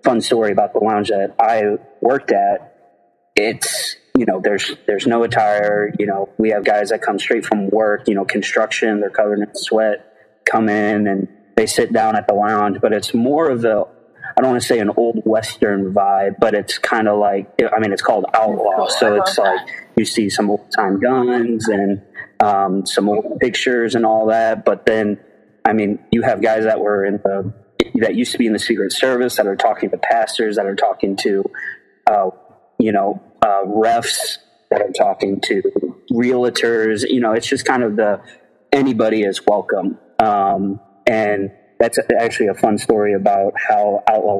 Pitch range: 100-110 Hz